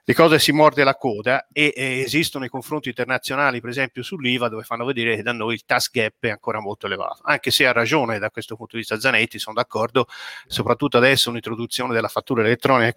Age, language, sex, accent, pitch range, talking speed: 30-49, Italian, male, native, 125-155 Hz, 215 wpm